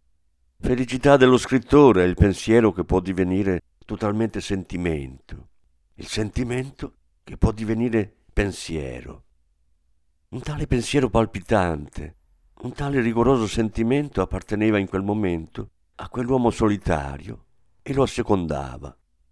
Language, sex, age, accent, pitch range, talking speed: Italian, male, 50-69, native, 75-115 Hz, 110 wpm